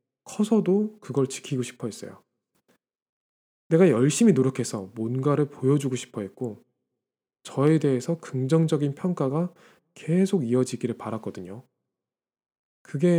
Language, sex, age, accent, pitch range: Korean, male, 20-39, native, 125-175 Hz